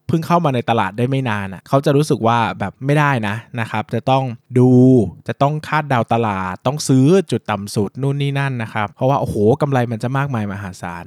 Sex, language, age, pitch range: male, Thai, 20-39, 105-135 Hz